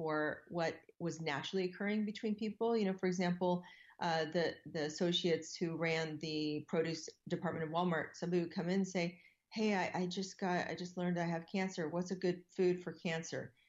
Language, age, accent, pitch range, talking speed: English, 40-59, American, 155-185 Hz, 195 wpm